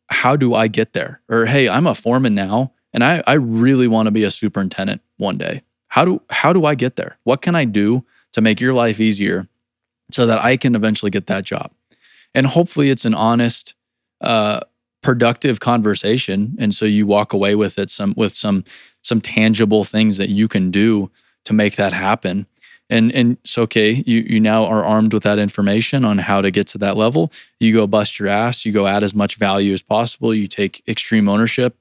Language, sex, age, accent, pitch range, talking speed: English, male, 20-39, American, 105-120 Hz, 210 wpm